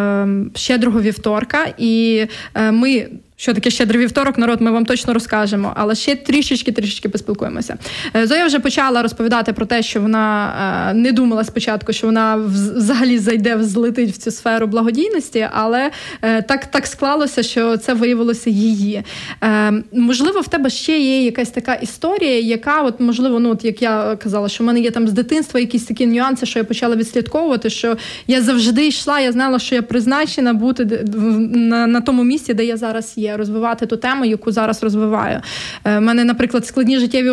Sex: female